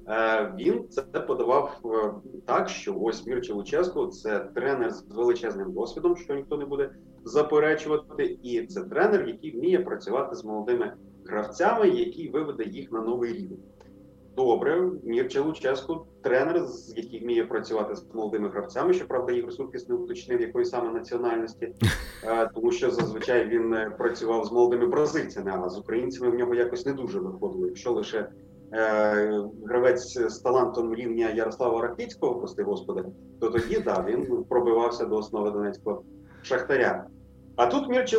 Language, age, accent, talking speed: Ukrainian, 30-49, native, 145 wpm